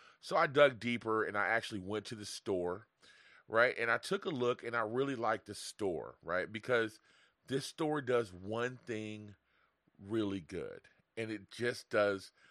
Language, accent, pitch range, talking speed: English, American, 95-120 Hz, 175 wpm